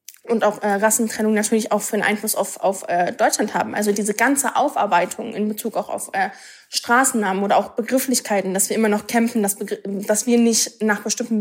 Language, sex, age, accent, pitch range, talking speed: German, female, 20-39, German, 205-225 Hz, 200 wpm